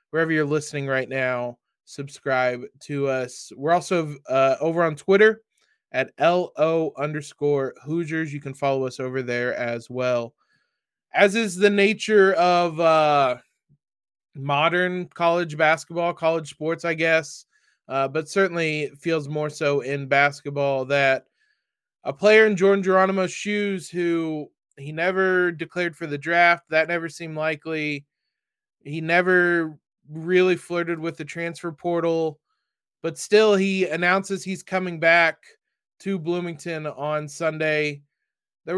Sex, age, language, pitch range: male, 20-39, English, 150-190 Hz